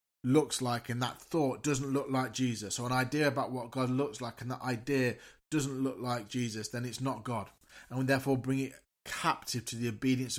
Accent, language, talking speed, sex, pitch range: British, English, 215 wpm, male, 115-135 Hz